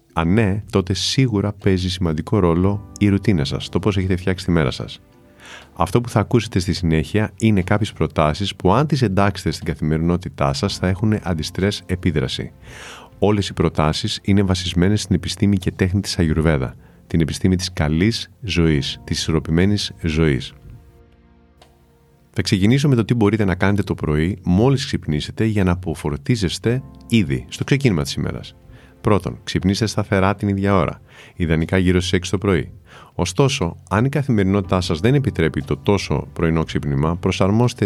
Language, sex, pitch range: Greek, male, 80-105 Hz